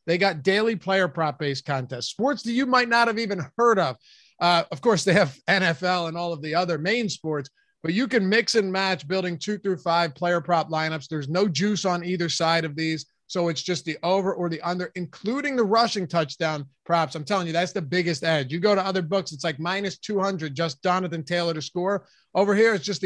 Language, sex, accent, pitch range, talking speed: English, male, American, 160-195 Hz, 230 wpm